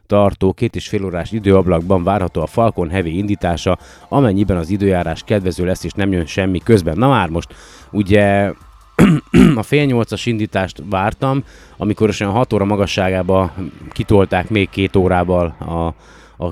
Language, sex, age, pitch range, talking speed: Hungarian, male, 20-39, 85-100 Hz, 155 wpm